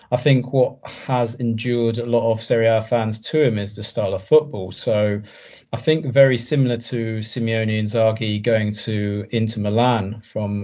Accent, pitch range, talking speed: British, 105-120 Hz, 180 wpm